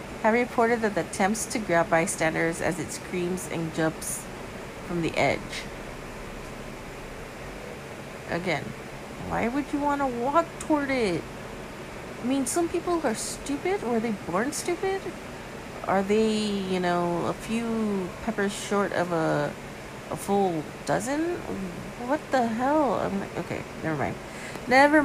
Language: English